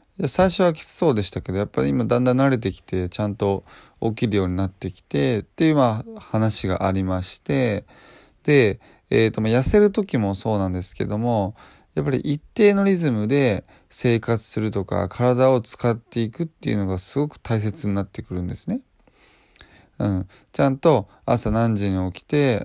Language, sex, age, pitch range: Japanese, male, 20-39, 100-135 Hz